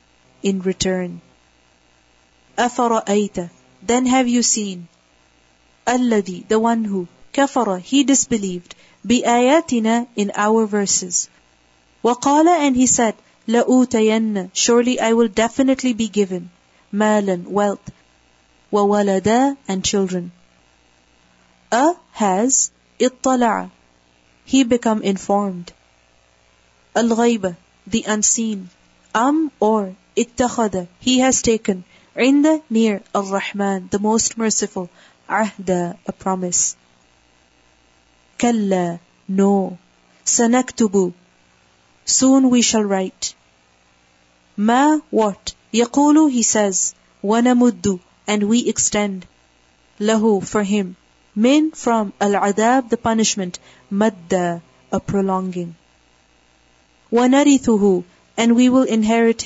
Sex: female